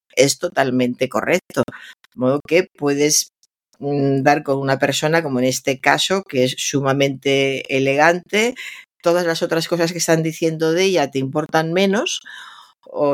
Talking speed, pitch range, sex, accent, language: 145 wpm, 140-175 Hz, female, Spanish, Spanish